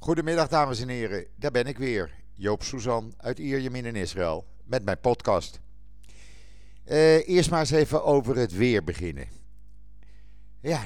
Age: 50-69